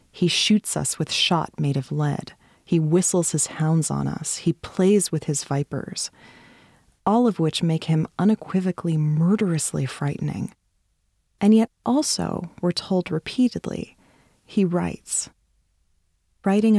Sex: female